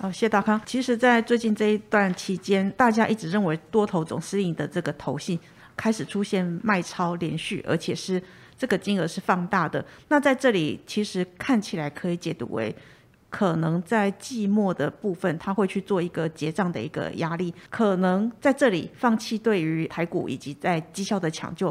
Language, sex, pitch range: Chinese, female, 175-215 Hz